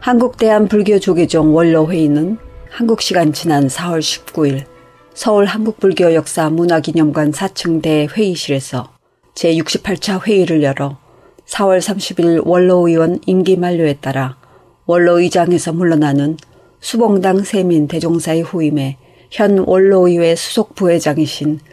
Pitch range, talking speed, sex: 150-190 Hz, 80 wpm, female